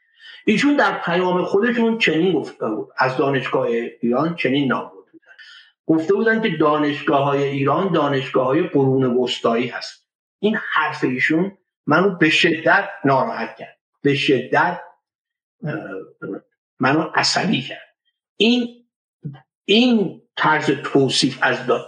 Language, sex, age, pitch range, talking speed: Persian, male, 50-69, 140-185 Hz, 115 wpm